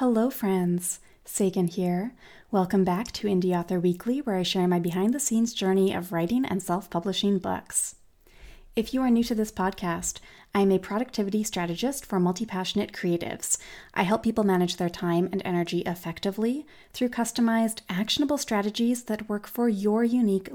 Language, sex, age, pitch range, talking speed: English, female, 30-49, 185-230 Hz, 160 wpm